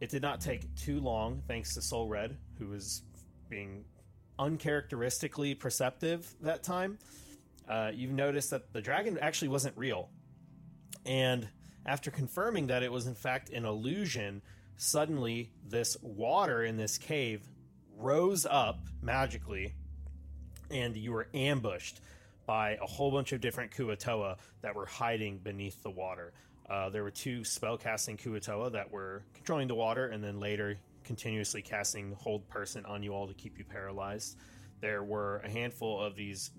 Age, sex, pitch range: 30-49, male, 100-130 Hz